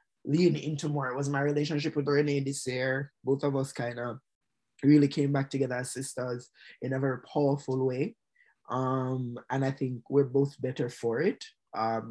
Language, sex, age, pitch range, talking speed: English, male, 20-39, 120-150 Hz, 185 wpm